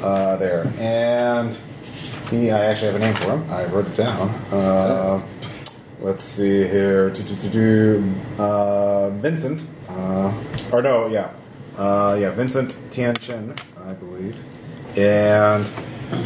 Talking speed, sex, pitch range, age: 130 wpm, male, 105-130 Hz, 30-49